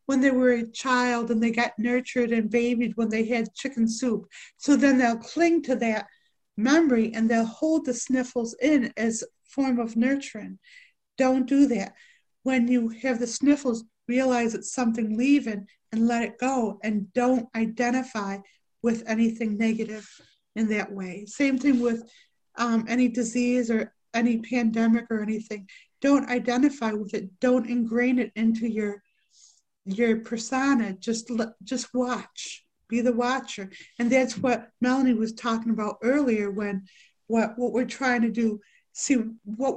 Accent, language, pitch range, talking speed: American, English, 220-255 Hz, 155 wpm